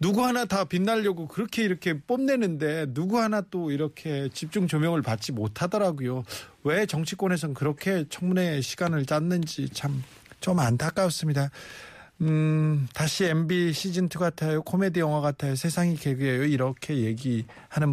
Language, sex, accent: Korean, male, native